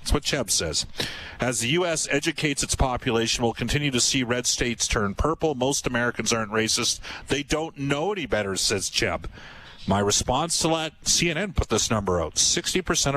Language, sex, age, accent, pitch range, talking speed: English, male, 50-69, American, 110-145 Hz, 180 wpm